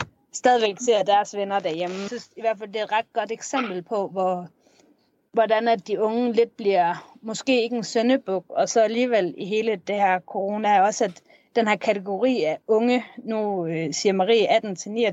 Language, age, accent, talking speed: Danish, 30-49, native, 180 wpm